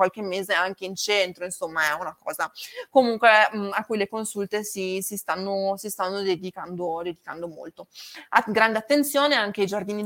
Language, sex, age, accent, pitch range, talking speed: Italian, female, 20-39, native, 185-215 Hz, 175 wpm